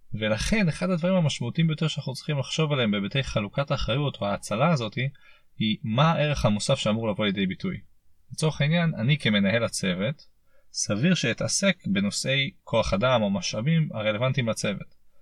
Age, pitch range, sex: 30-49, 110-170 Hz, male